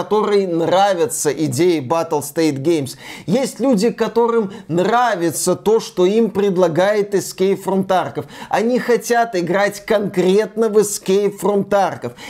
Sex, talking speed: male, 115 wpm